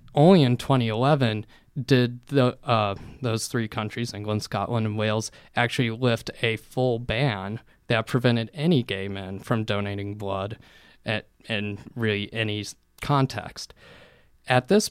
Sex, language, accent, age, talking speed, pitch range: male, English, American, 20-39, 135 wpm, 115-150 Hz